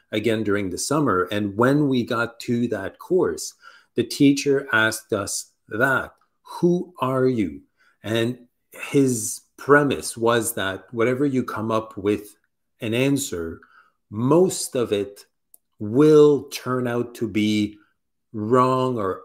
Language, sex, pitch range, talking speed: English, male, 105-130 Hz, 130 wpm